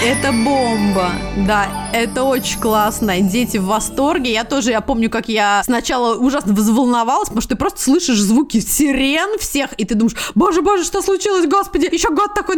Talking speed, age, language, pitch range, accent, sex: 175 wpm, 20-39, Russian, 210-275 Hz, native, female